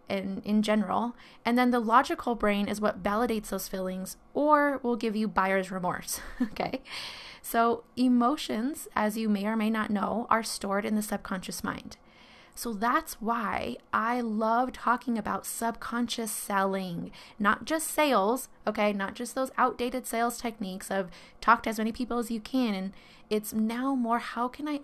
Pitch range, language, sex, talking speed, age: 210-250 Hz, English, female, 170 wpm, 20-39